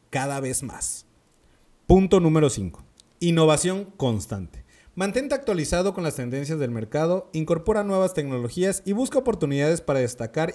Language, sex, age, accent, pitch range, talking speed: Spanish, male, 30-49, Mexican, 125-185 Hz, 130 wpm